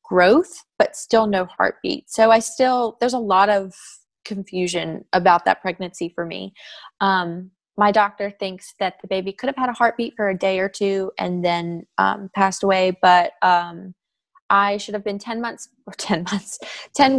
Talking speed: 180 wpm